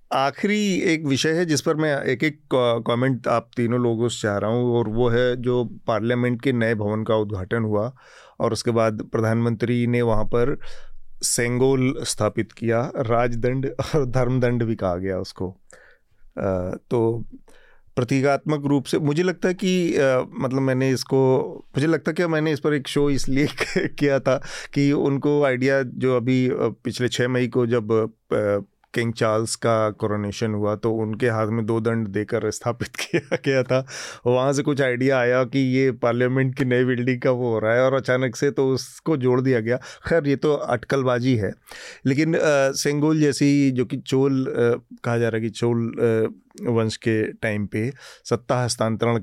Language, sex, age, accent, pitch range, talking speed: Hindi, male, 30-49, native, 115-135 Hz, 170 wpm